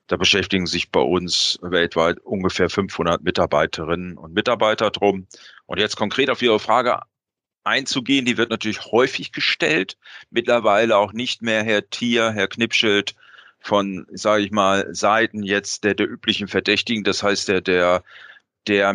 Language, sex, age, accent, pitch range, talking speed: German, male, 40-59, German, 100-120 Hz, 150 wpm